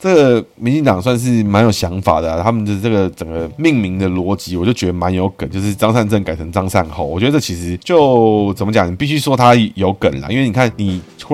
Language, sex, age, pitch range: Chinese, male, 20-39, 85-110 Hz